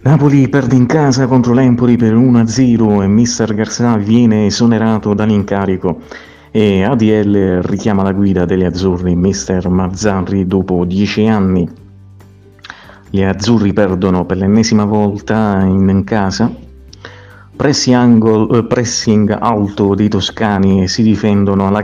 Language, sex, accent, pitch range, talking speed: Italian, male, native, 95-110 Hz, 125 wpm